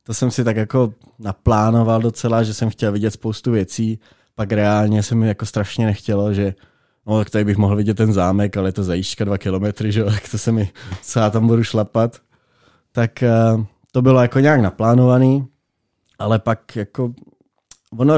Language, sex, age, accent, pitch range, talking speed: Czech, male, 20-39, native, 105-125 Hz, 180 wpm